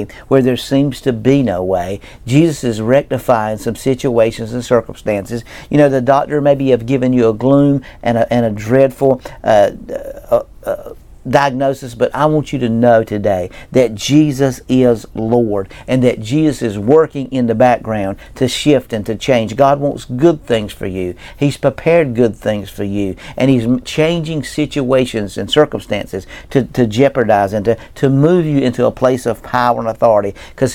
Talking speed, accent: 180 wpm, American